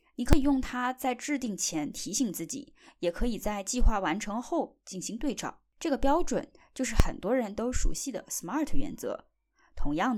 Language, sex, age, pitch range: Chinese, female, 20-39, 215-290 Hz